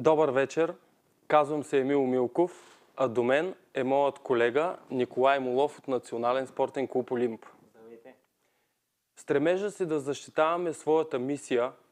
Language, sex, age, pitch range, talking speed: Bulgarian, male, 20-39, 130-165 Hz, 130 wpm